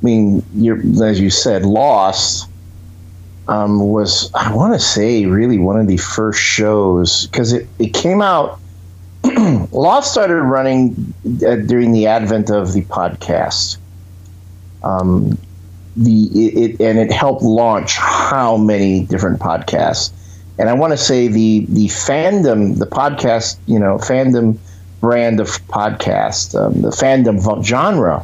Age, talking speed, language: 50-69, 135 wpm, English